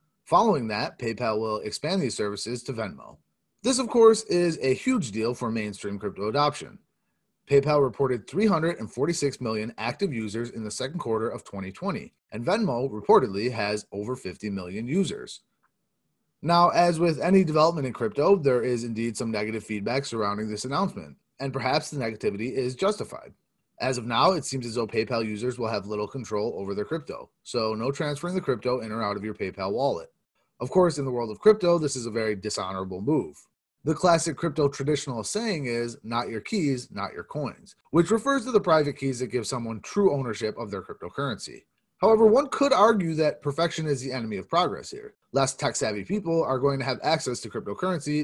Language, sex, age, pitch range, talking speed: English, male, 30-49, 115-175 Hz, 190 wpm